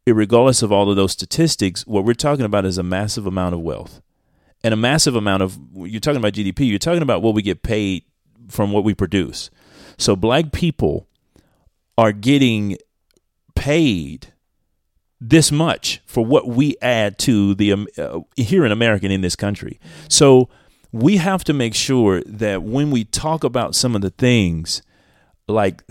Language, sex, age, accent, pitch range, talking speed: English, male, 30-49, American, 95-130 Hz, 170 wpm